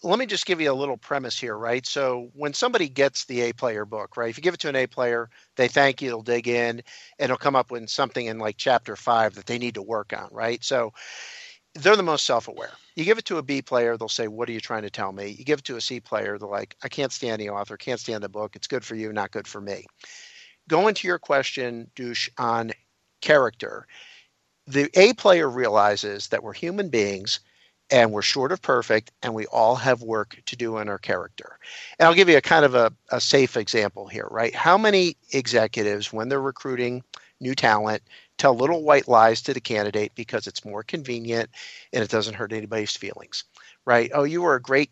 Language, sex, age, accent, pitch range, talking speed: English, male, 50-69, American, 110-140 Hz, 220 wpm